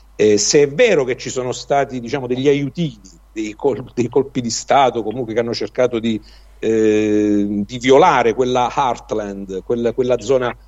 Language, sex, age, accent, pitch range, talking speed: Italian, male, 50-69, native, 110-135 Hz, 170 wpm